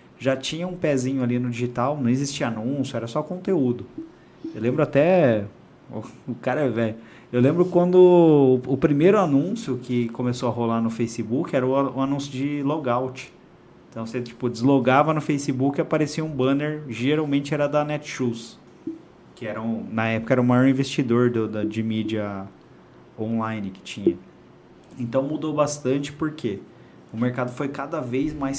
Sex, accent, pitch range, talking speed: male, Brazilian, 115-140 Hz, 165 wpm